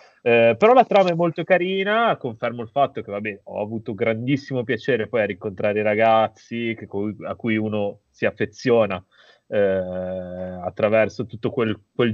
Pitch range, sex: 105-125 Hz, male